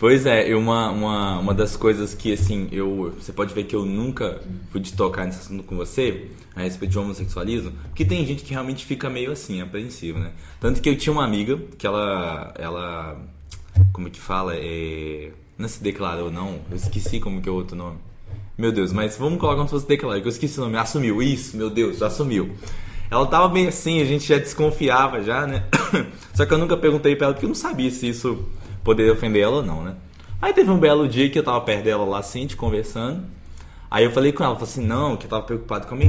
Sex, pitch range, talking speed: male, 95-120 Hz, 230 wpm